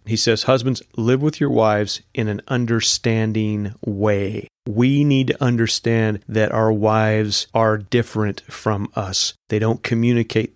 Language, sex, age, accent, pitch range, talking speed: English, male, 30-49, American, 105-120 Hz, 140 wpm